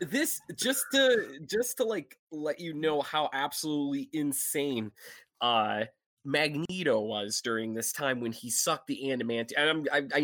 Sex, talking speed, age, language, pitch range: male, 150 wpm, 20-39, English, 120-155 Hz